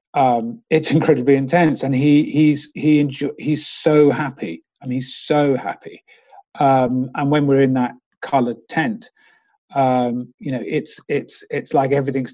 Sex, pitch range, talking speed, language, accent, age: male, 130-150 Hz, 160 wpm, English, British, 40-59